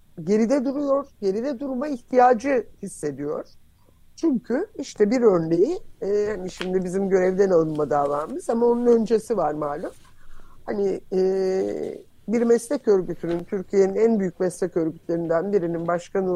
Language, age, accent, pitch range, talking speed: Turkish, 50-69, native, 185-260 Hz, 125 wpm